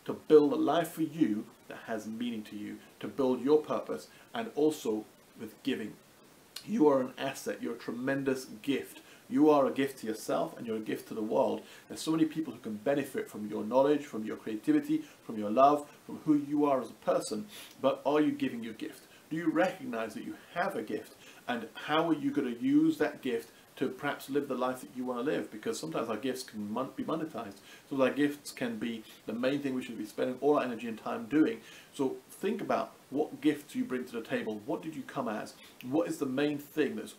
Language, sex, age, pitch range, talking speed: English, male, 40-59, 115-155 Hz, 225 wpm